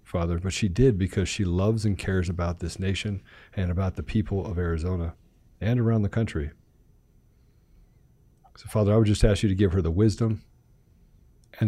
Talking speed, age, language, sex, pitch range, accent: 180 wpm, 40-59, English, male, 95-110 Hz, American